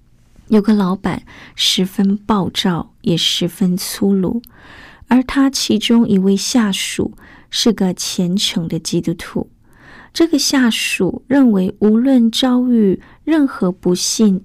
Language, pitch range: Chinese, 185-230 Hz